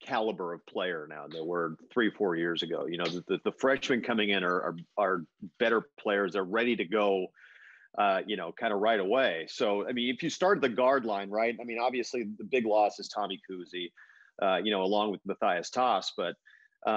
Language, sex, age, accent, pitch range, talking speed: English, male, 40-59, American, 100-125 Hz, 220 wpm